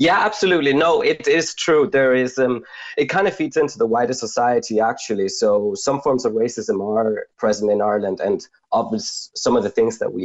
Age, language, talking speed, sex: 20-39, English, 200 wpm, male